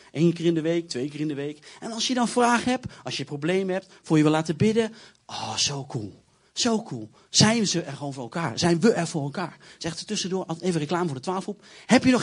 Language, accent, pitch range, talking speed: Dutch, Dutch, 170-255 Hz, 255 wpm